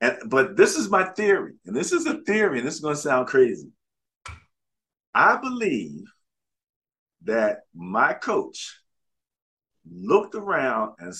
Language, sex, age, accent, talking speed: English, male, 50-69, American, 140 wpm